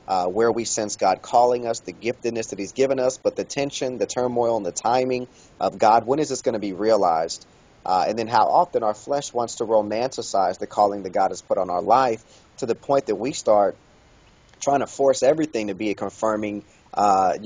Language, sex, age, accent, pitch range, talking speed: English, male, 30-49, American, 105-120 Hz, 220 wpm